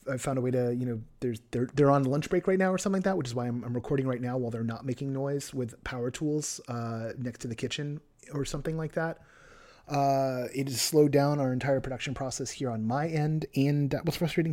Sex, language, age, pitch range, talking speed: male, English, 30-49, 130-170 Hz, 250 wpm